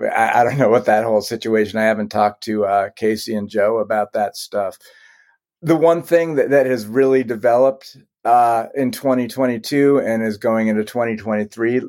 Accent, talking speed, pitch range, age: American, 170 wpm, 110-130 Hz, 40-59